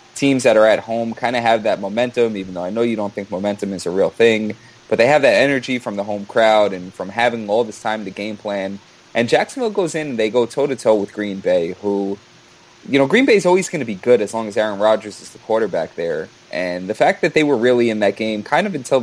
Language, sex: English, male